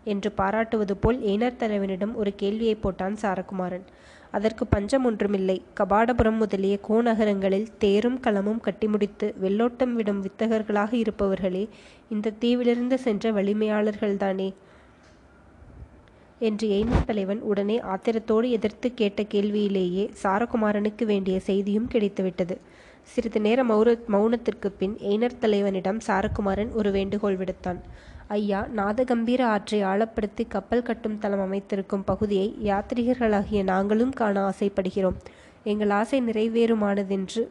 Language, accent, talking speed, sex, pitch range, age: Tamil, native, 100 wpm, female, 200-225 Hz, 20-39